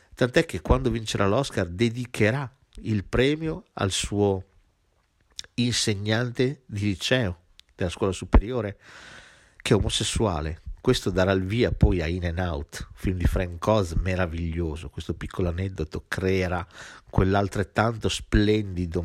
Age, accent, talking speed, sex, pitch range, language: 50-69, native, 125 wpm, male, 90-130 Hz, Italian